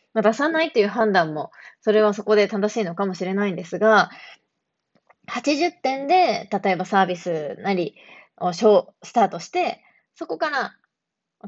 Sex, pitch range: female, 180-240 Hz